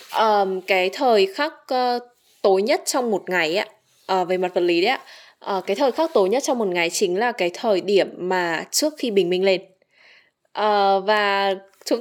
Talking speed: 205 wpm